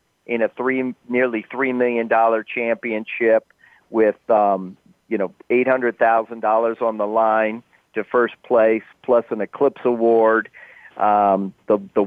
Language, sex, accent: English, male, American